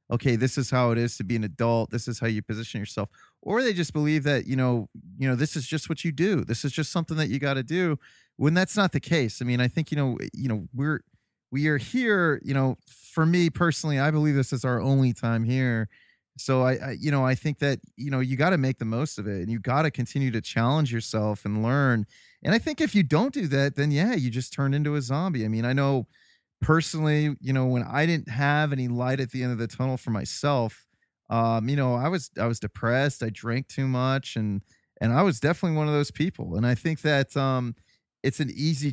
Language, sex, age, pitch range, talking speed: English, male, 30-49, 115-145 Hz, 255 wpm